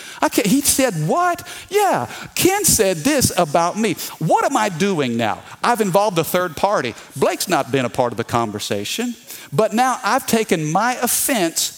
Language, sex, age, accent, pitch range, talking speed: English, male, 50-69, American, 155-215 Hz, 170 wpm